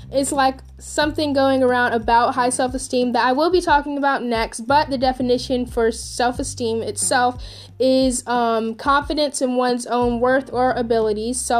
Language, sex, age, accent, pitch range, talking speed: English, female, 10-29, American, 230-280 Hz, 155 wpm